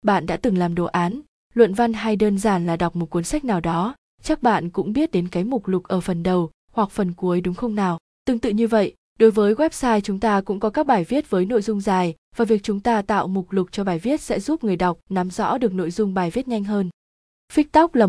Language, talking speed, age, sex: Vietnamese, 260 wpm, 20-39, female